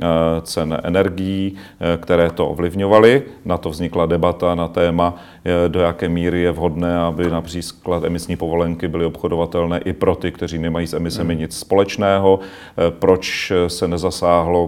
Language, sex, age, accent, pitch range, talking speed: Czech, male, 40-59, native, 85-95 Hz, 140 wpm